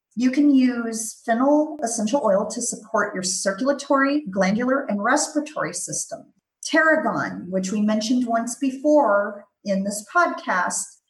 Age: 40-59